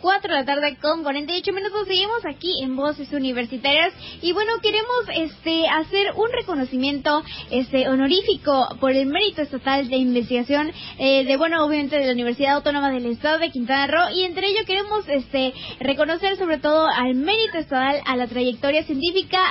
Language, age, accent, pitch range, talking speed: Spanish, 20-39, Mexican, 275-350 Hz, 170 wpm